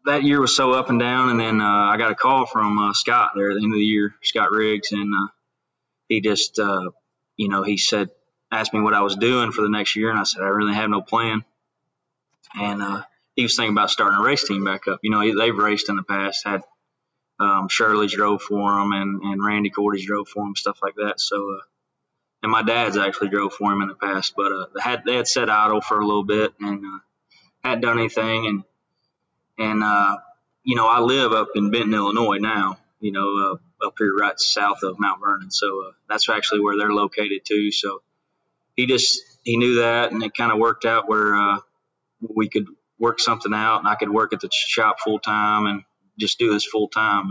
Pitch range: 100-110 Hz